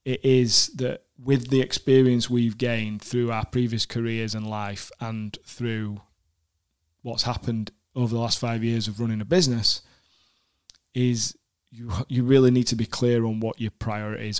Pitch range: 110-130 Hz